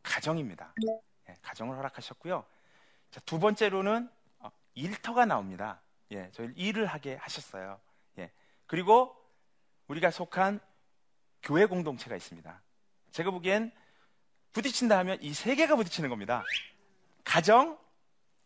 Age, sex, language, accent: 40-59, male, Korean, native